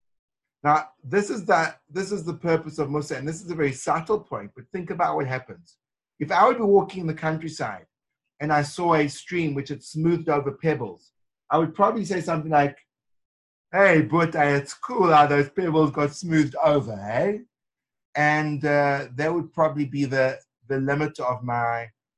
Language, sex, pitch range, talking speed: English, male, 130-160 Hz, 185 wpm